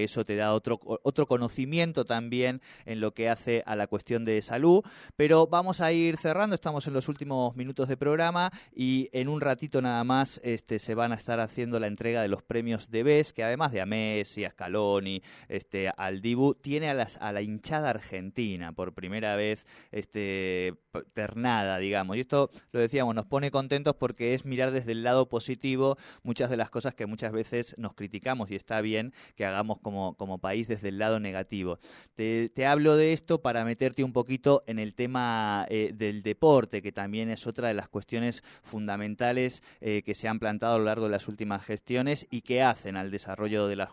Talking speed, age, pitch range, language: 200 wpm, 20-39, 105-130 Hz, Spanish